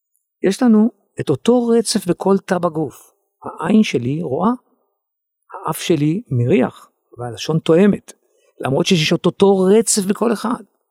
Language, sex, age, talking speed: Hebrew, male, 50-69, 125 wpm